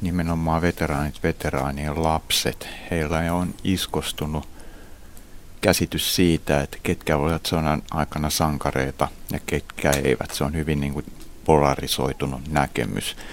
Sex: male